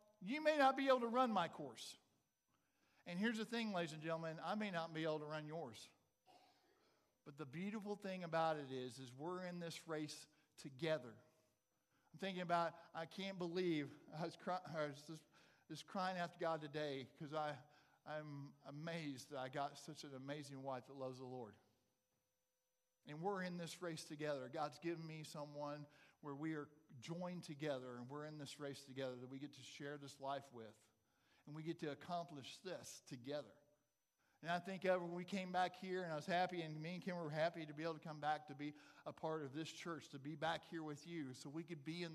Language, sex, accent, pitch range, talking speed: English, male, American, 145-180 Hz, 210 wpm